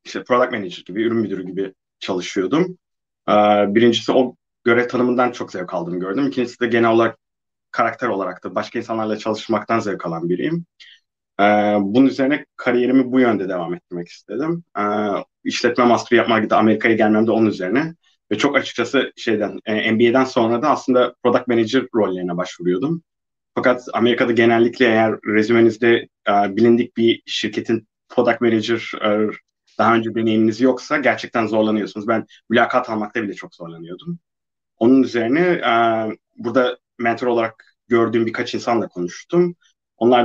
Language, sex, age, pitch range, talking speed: Turkish, male, 30-49, 105-125 Hz, 140 wpm